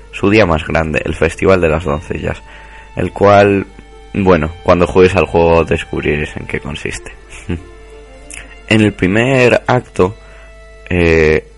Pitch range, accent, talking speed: 80-100 Hz, Spanish, 130 wpm